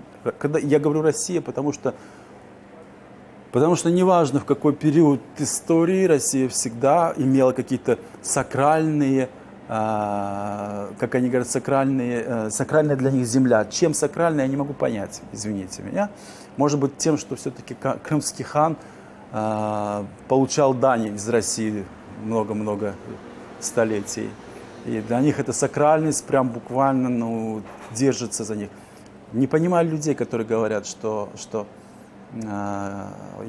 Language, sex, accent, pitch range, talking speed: Ukrainian, male, native, 110-145 Hz, 125 wpm